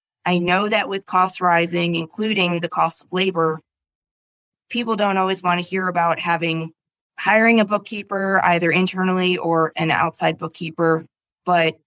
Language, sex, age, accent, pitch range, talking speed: English, female, 20-39, American, 165-190 Hz, 145 wpm